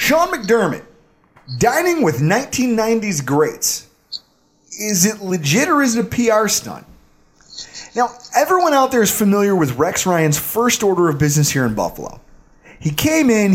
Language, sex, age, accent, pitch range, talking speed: English, male, 30-49, American, 150-225 Hz, 150 wpm